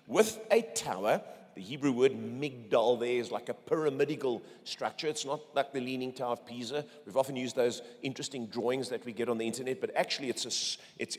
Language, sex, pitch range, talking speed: English, male, 130-195 Hz, 205 wpm